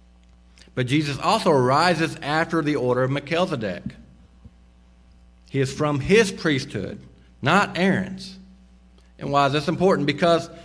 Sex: male